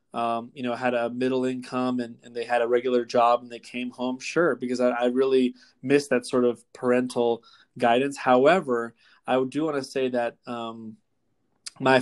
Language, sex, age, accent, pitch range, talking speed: English, male, 20-39, American, 120-135 Hz, 190 wpm